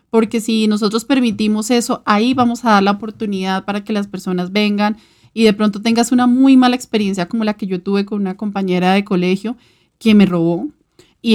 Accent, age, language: Colombian, 30-49, Spanish